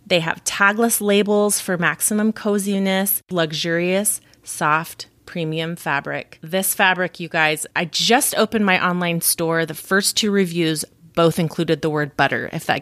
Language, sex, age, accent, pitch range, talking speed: English, female, 30-49, American, 160-195 Hz, 150 wpm